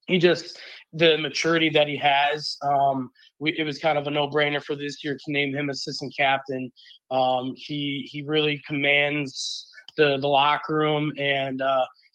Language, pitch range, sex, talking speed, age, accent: English, 140-155 Hz, male, 170 wpm, 20-39, American